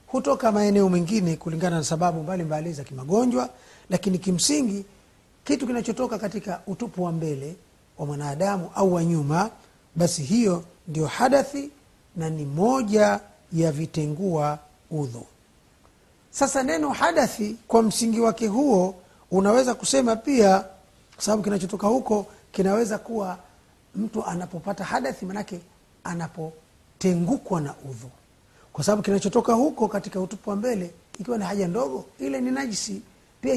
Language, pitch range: Swahili, 175-230 Hz